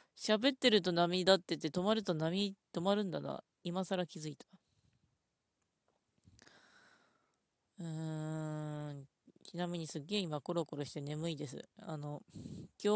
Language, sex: Japanese, female